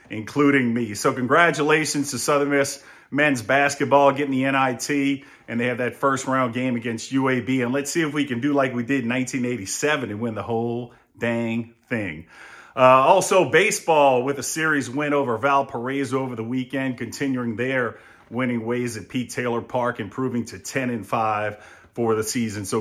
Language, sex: English, male